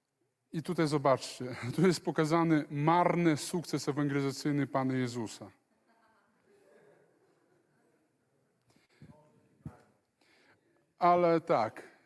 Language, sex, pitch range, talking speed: Polish, male, 90-145 Hz, 65 wpm